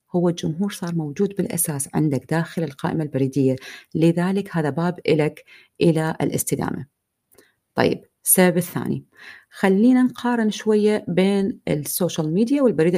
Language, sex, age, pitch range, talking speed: Arabic, female, 30-49, 160-235 Hz, 115 wpm